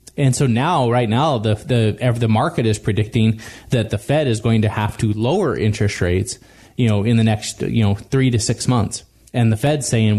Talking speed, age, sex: 220 wpm, 20-39, male